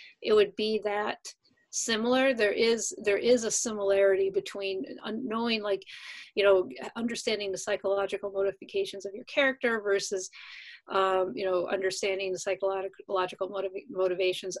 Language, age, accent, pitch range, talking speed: English, 40-59, American, 195-245 Hz, 130 wpm